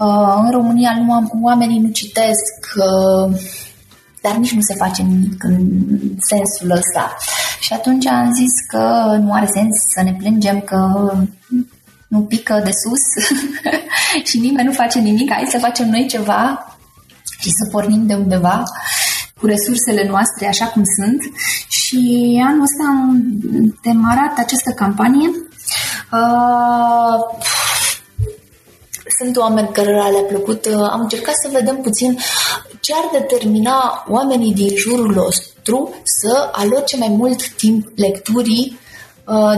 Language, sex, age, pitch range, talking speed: Romanian, female, 20-39, 200-240 Hz, 130 wpm